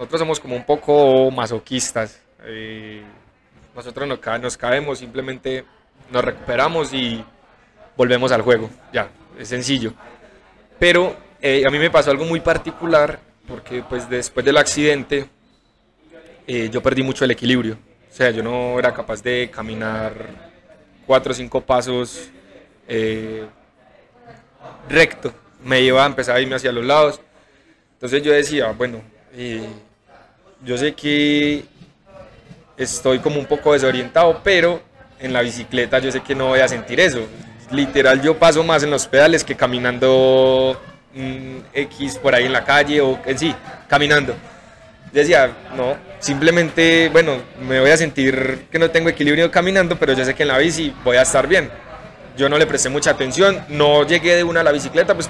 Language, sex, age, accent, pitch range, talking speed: Spanish, male, 20-39, Colombian, 125-150 Hz, 160 wpm